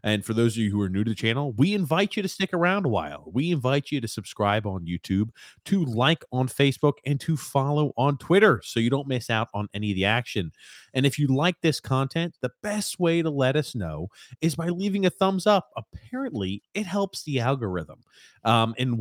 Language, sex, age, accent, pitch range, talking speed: English, male, 30-49, American, 105-145 Hz, 225 wpm